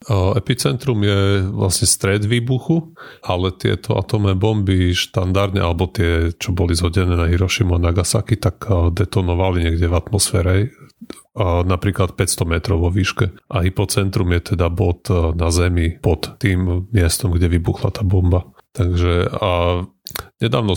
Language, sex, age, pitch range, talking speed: Slovak, male, 30-49, 90-110 Hz, 145 wpm